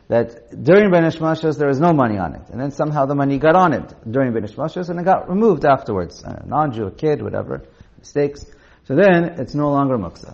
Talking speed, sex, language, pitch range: 220 wpm, male, English, 105-160 Hz